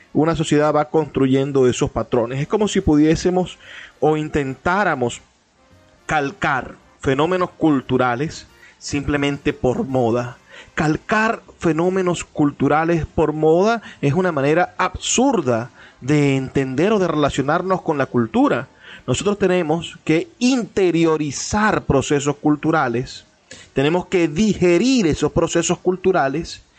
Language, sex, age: Spanish, male, 30-49